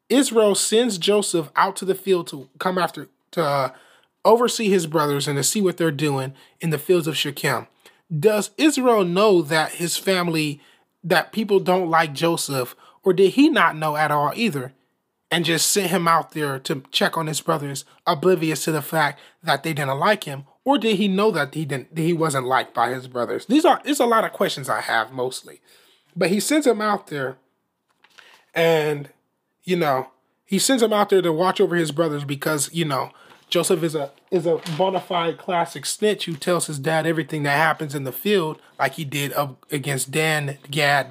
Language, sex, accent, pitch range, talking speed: English, male, American, 145-190 Hz, 195 wpm